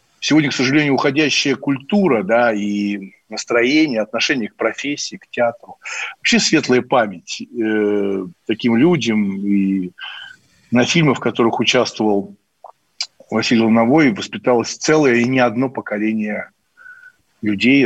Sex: male